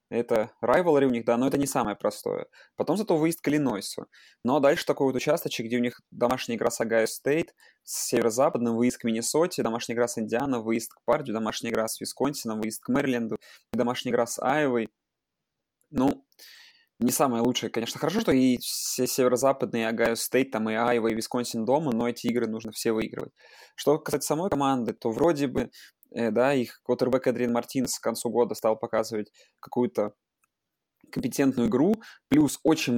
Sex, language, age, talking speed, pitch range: male, Russian, 20-39, 175 wpm, 115-135 Hz